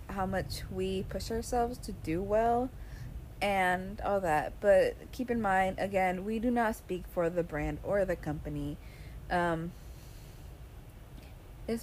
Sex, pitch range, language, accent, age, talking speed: female, 165-215 Hz, English, American, 20-39, 140 wpm